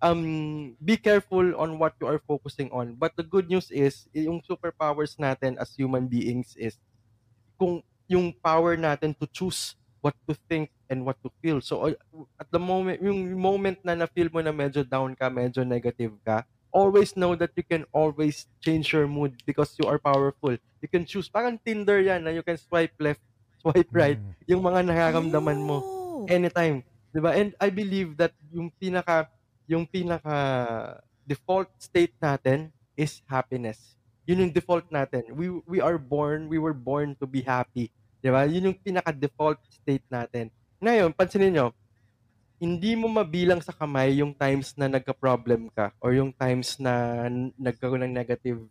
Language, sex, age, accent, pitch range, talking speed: Filipino, male, 20-39, native, 125-170 Hz, 165 wpm